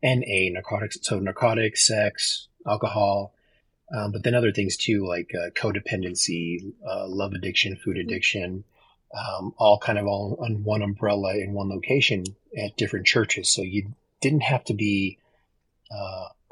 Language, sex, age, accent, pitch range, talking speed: English, male, 30-49, American, 95-110 Hz, 150 wpm